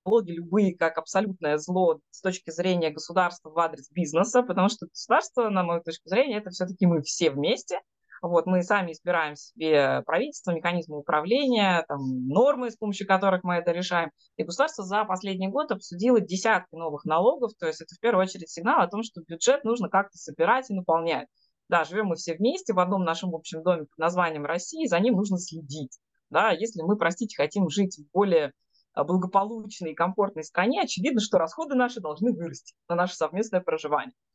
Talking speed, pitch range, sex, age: 180 wpm, 160-215 Hz, female, 20-39